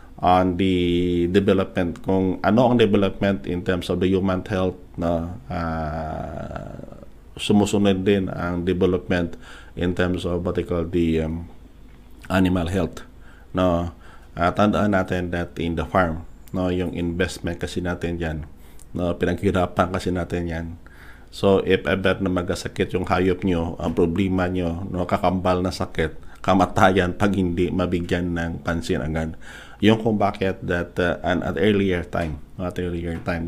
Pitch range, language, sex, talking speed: 85-95 Hz, Filipino, male, 145 wpm